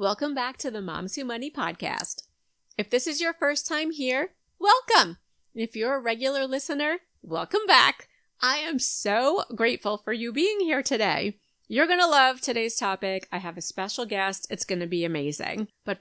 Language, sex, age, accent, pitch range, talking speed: English, female, 30-49, American, 200-280 Hz, 175 wpm